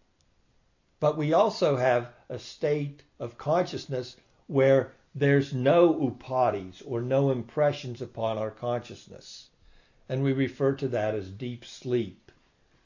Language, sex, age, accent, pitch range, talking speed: English, male, 60-79, American, 105-135 Hz, 120 wpm